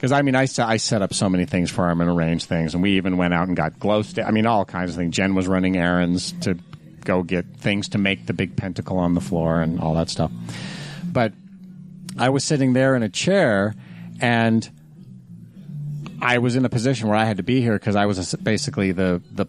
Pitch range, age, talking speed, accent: 95-125 Hz, 40-59, 230 wpm, American